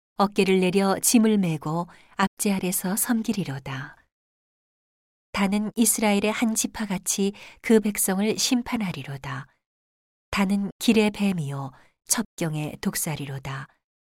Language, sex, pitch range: Korean, female, 150-210 Hz